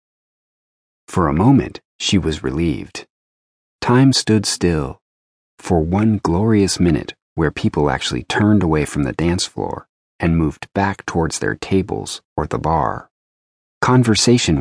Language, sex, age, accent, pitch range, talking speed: English, male, 40-59, American, 75-100 Hz, 130 wpm